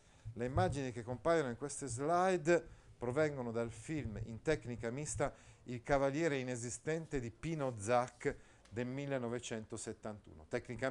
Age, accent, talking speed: 40-59, native, 120 wpm